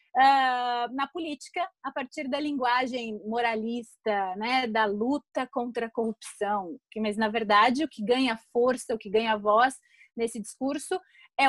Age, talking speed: 30-49, 145 wpm